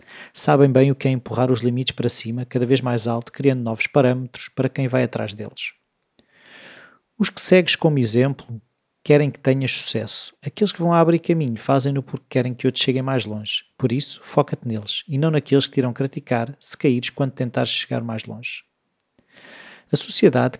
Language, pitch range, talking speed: Portuguese, 125-150 Hz, 185 wpm